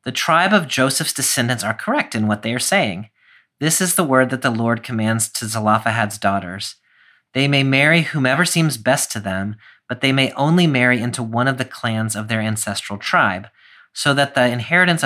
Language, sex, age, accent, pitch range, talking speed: English, male, 40-59, American, 110-135 Hz, 195 wpm